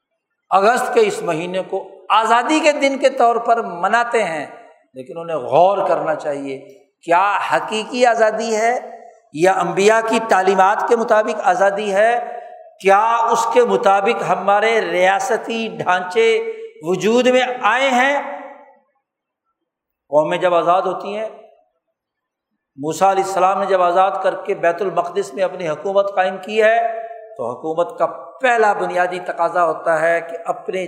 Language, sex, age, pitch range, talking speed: Urdu, male, 60-79, 180-245 Hz, 140 wpm